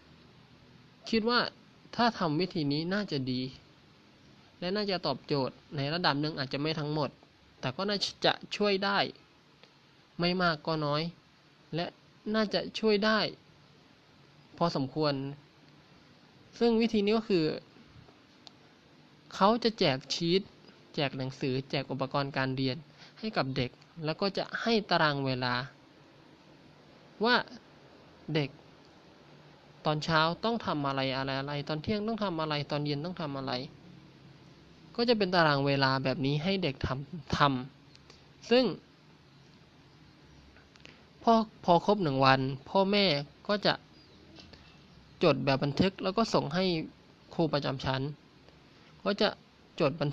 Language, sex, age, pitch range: Thai, male, 20-39, 140-185 Hz